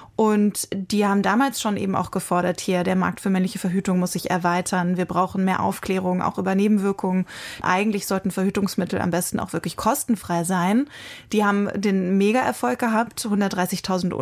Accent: German